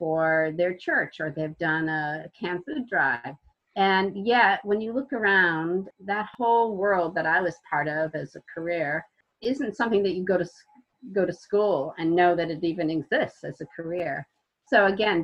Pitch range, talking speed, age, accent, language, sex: 160-205 Hz, 185 wpm, 40-59, American, English, female